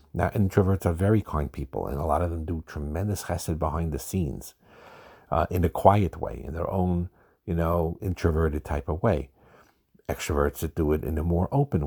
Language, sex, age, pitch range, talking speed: English, male, 50-69, 75-95 Hz, 195 wpm